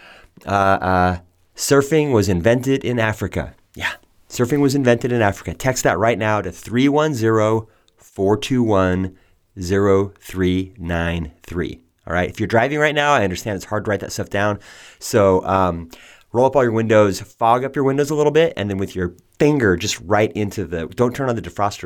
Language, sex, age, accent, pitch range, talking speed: English, male, 30-49, American, 95-125 Hz, 175 wpm